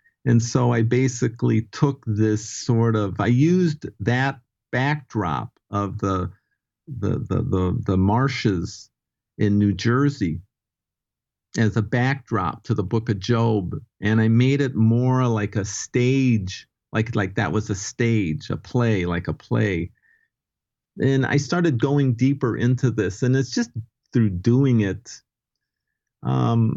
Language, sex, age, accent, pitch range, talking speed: English, male, 50-69, American, 100-125 Hz, 140 wpm